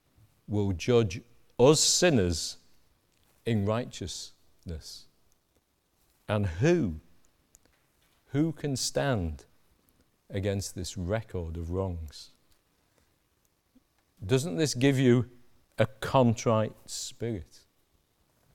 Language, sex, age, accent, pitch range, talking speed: English, male, 50-69, British, 90-130 Hz, 75 wpm